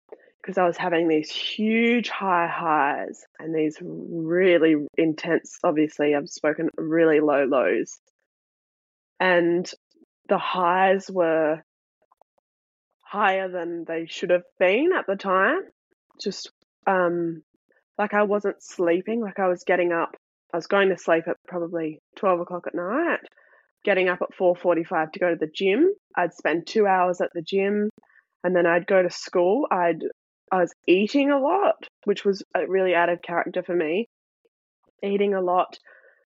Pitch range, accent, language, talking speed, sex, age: 170-205 Hz, Australian, English, 155 wpm, female, 10-29